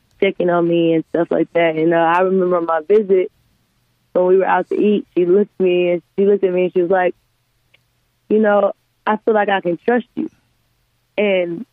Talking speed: 215 wpm